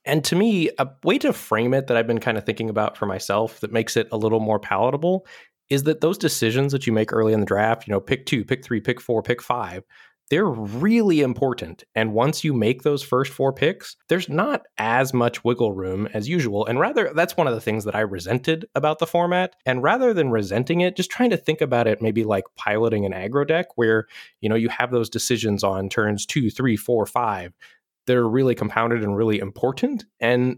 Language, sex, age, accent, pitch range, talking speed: English, male, 20-39, American, 110-140 Hz, 225 wpm